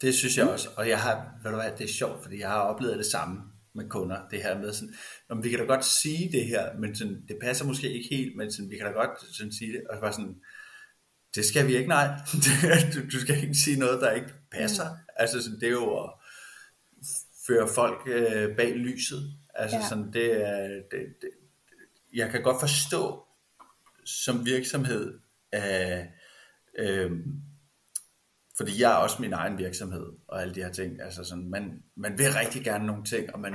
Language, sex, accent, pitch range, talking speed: Danish, male, native, 105-135 Hz, 200 wpm